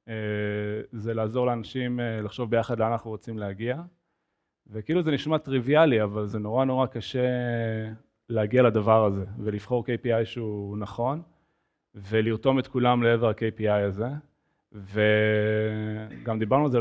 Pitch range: 110-140 Hz